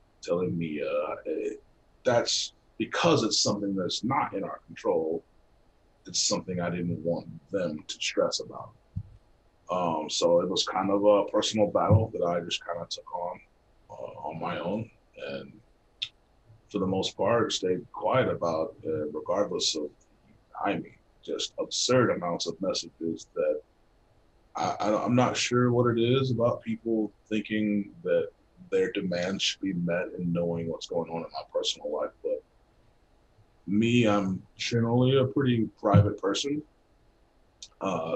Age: 30-49